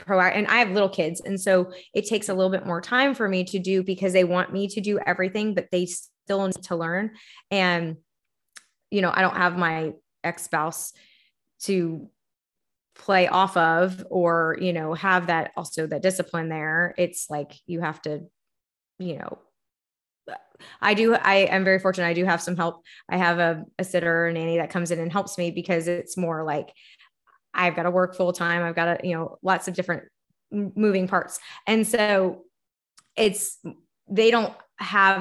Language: English